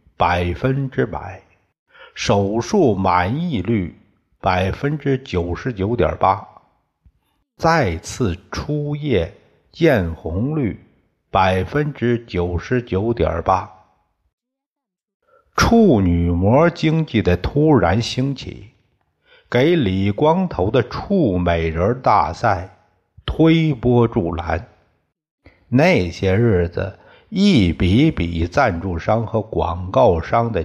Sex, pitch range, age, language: male, 95-150 Hz, 60-79, Chinese